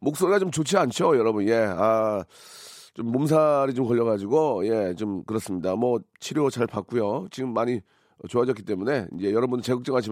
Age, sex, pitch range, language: 40-59, male, 115-150 Hz, Korean